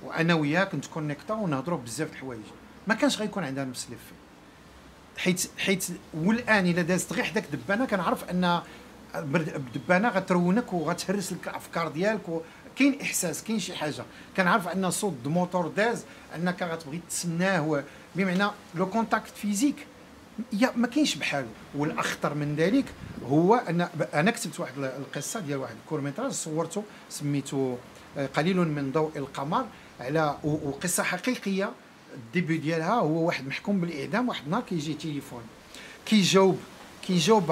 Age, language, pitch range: 50-69, Arabic, 155-215 Hz